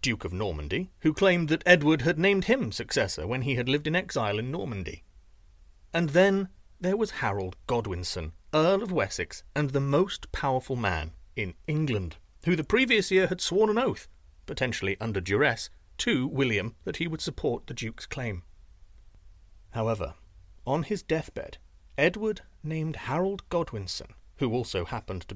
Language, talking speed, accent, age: English, 160 wpm, British, 40-59